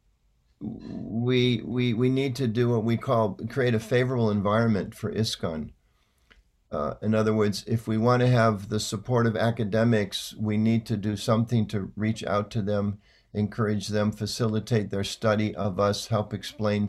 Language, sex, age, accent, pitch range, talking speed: English, male, 50-69, American, 100-115 Hz, 165 wpm